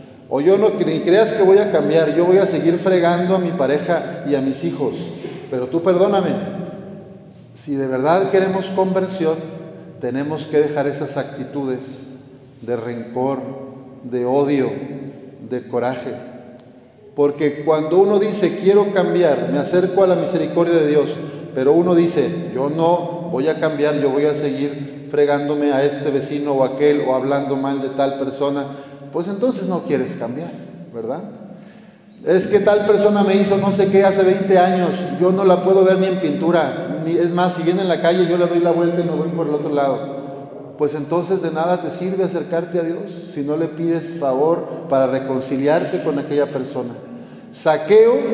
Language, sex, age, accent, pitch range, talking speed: Spanish, male, 50-69, Mexican, 140-185 Hz, 180 wpm